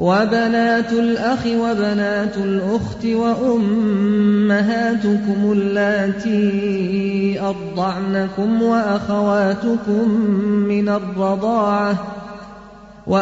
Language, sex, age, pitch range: Thai, male, 30-49, 200-230 Hz